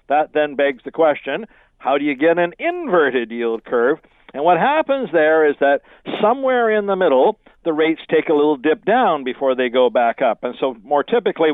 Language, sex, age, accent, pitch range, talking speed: English, male, 60-79, American, 135-170 Hz, 205 wpm